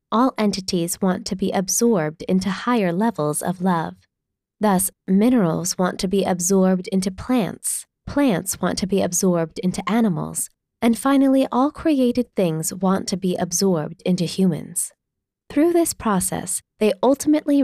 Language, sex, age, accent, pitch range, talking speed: English, female, 20-39, American, 175-225 Hz, 145 wpm